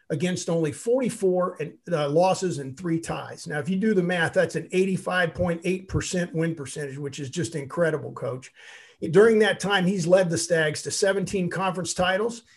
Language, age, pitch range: English, 50-69, 150-185 Hz